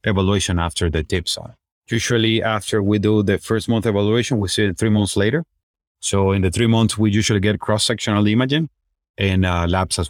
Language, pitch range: English, 95-110 Hz